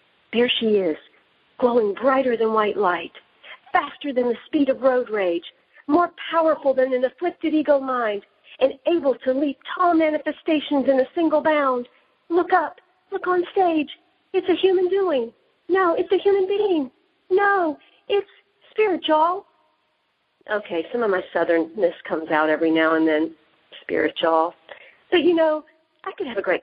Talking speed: 155 wpm